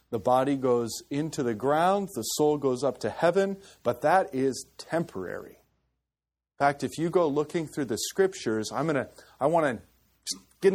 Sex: male